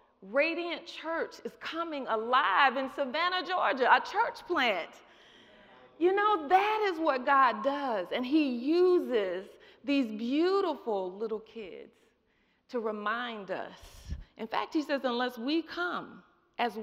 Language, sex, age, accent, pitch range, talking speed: English, female, 40-59, American, 225-330 Hz, 130 wpm